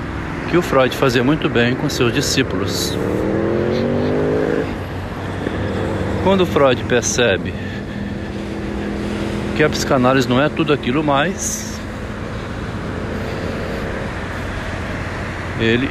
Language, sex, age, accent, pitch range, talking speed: Portuguese, male, 60-79, Brazilian, 100-130 Hz, 85 wpm